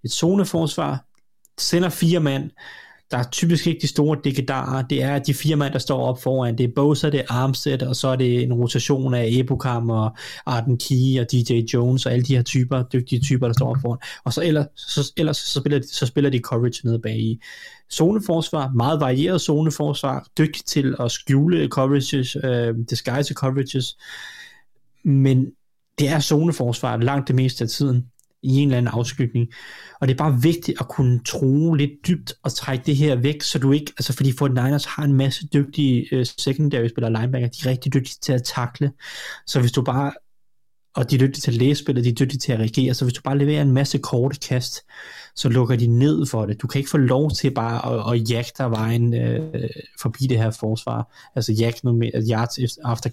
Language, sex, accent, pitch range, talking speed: Danish, male, native, 125-145 Hz, 200 wpm